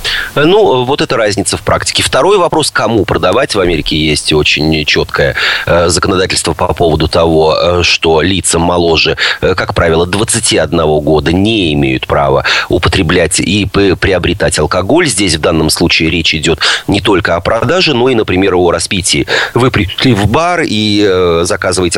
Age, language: 30-49, Russian